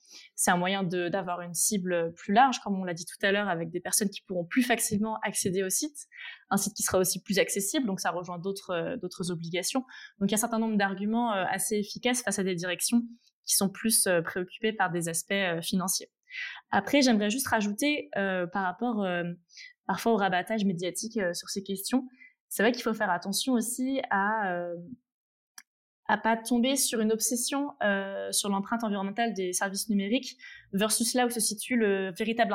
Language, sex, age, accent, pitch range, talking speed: French, female, 20-39, French, 185-235 Hz, 195 wpm